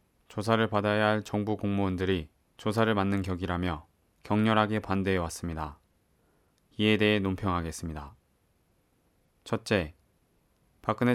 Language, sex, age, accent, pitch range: Korean, male, 20-39, native, 90-110 Hz